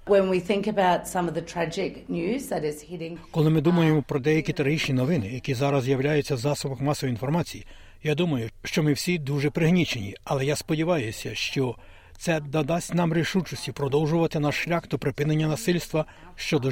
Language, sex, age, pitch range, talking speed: Ukrainian, male, 60-79, 140-170 Hz, 130 wpm